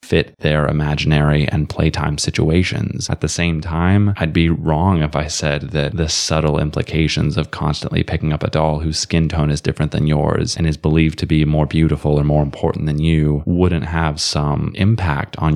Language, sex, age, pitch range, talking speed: English, male, 20-39, 75-85 Hz, 195 wpm